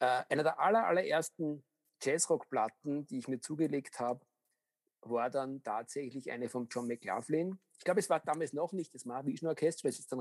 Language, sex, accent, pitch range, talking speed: German, male, German, 130-165 Hz, 175 wpm